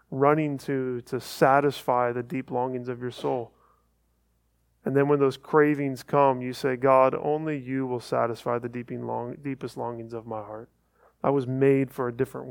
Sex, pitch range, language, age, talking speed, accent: male, 120-145 Hz, English, 20-39, 175 wpm, American